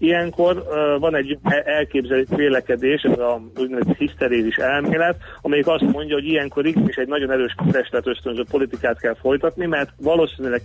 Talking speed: 145 wpm